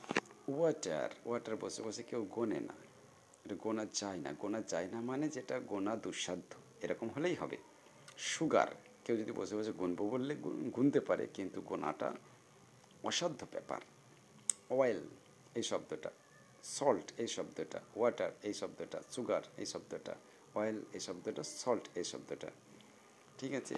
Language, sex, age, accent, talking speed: Bengali, male, 50-69, native, 130 wpm